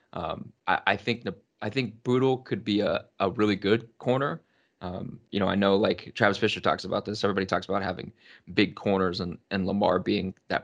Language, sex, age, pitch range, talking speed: English, male, 20-39, 95-110 Hz, 195 wpm